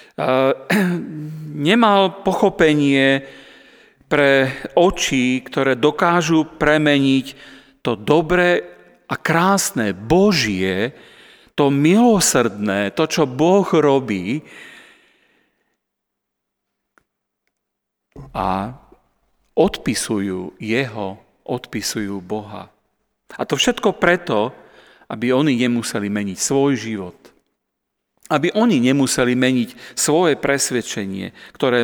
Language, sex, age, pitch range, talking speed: Slovak, male, 40-59, 120-165 Hz, 75 wpm